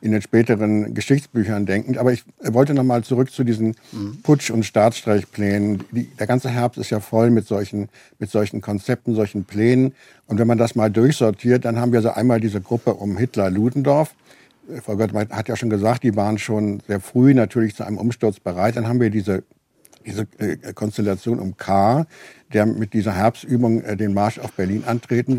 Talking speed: 185 wpm